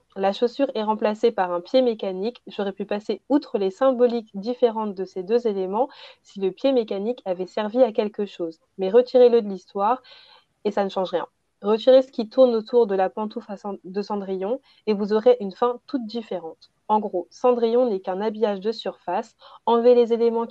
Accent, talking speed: French, 190 wpm